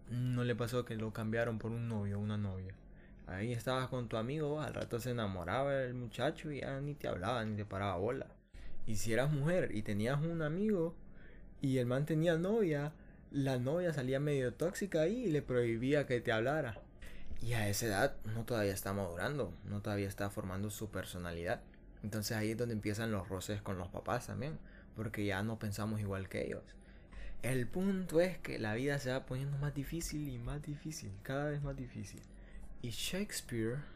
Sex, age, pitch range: male, 20-39, 105-140 Hz